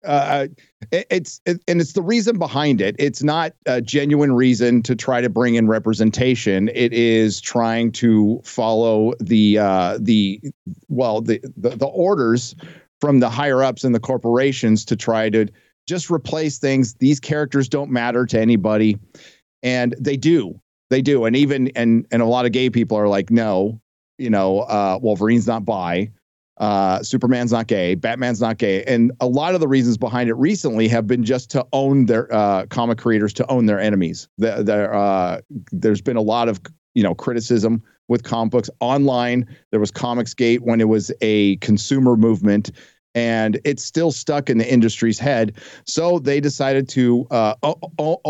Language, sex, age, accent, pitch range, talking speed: English, male, 40-59, American, 110-135 Hz, 175 wpm